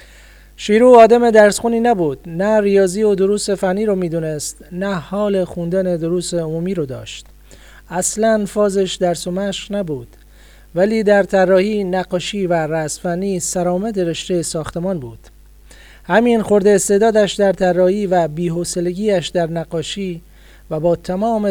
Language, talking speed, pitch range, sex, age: Persian, 130 wpm, 165-200 Hz, male, 40-59